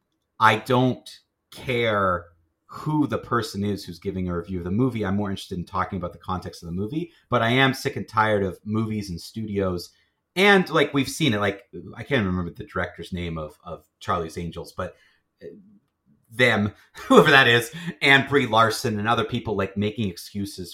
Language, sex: English, male